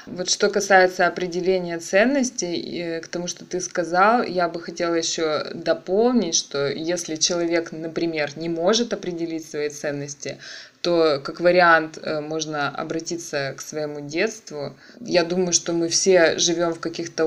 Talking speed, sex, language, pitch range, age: 140 wpm, female, Russian, 160-185 Hz, 20-39